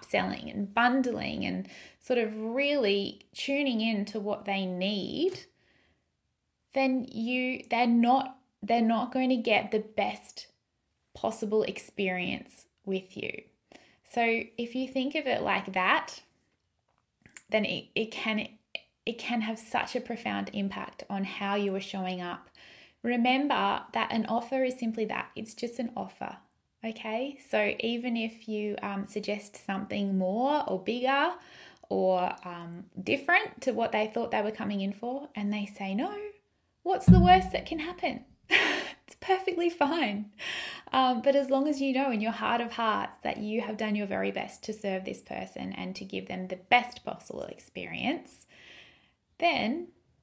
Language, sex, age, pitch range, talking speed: English, female, 20-39, 205-260 Hz, 160 wpm